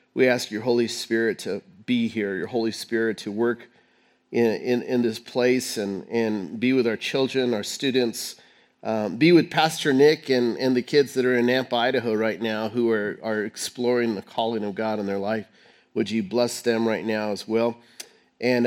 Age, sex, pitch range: 40-59, male, 110-130 Hz